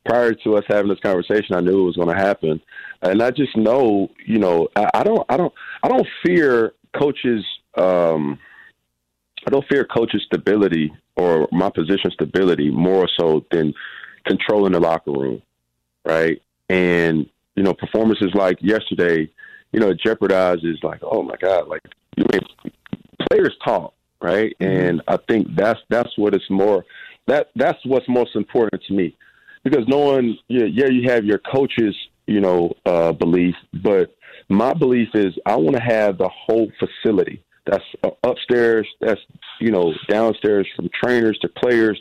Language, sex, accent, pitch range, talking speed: English, male, American, 90-115 Hz, 165 wpm